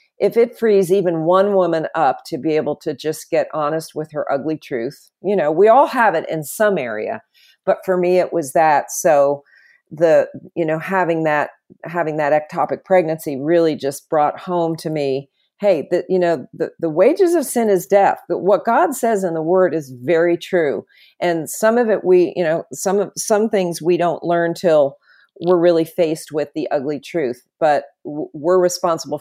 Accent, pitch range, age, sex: American, 155-190 Hz, 50-69, female